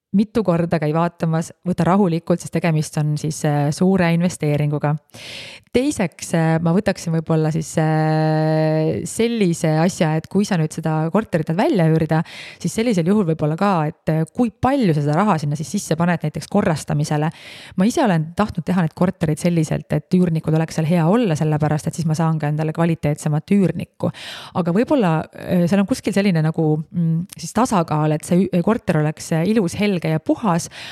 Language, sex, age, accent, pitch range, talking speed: English, female, 20-39, Finnish, 155-190 Hz, 160 wpm